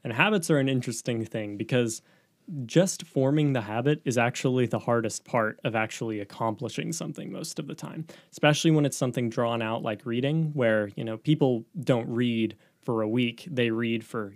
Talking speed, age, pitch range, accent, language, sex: 185 wpm, 20-39, 115-155 Hz, American, English, male